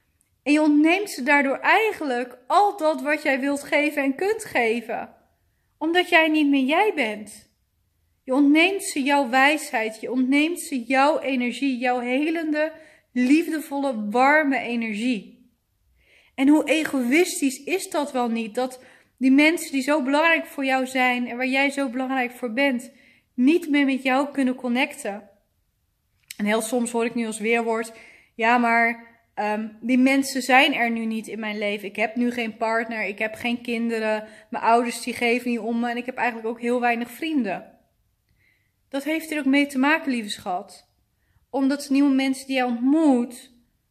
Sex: female